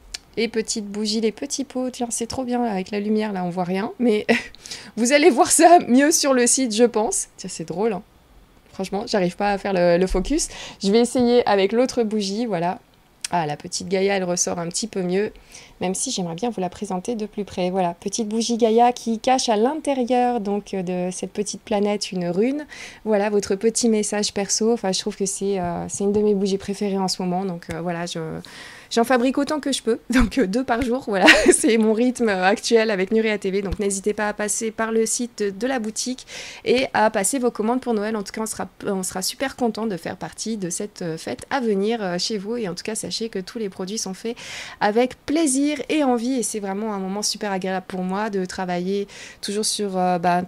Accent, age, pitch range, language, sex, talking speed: French, 20-39, 190-235 Hz, French, female, 225 wpm